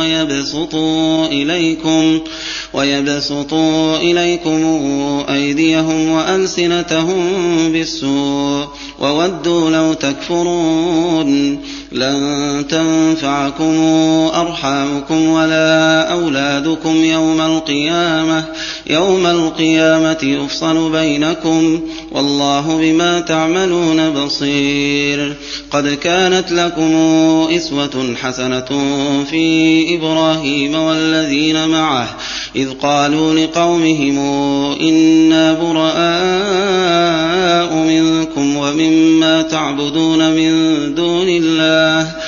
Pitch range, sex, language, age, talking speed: 145-160 Hz, male, Arabic, 30-49, 60 wpm